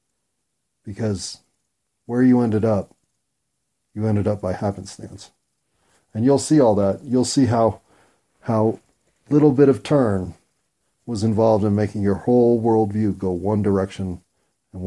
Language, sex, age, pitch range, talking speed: English, male, 40-59, 100-120 Hz, 135 wpm